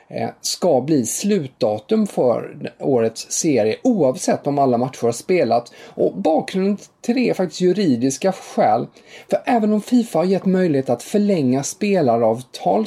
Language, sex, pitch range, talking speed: English, male, 120-185 Hz, 135 wpm